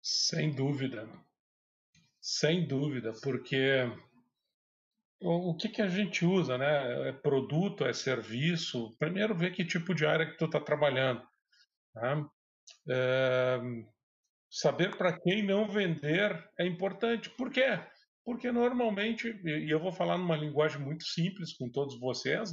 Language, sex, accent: Portuguese, male, Brazilian